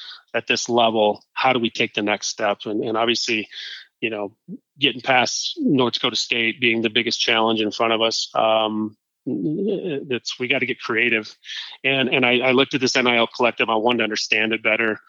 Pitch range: 110-130 Hz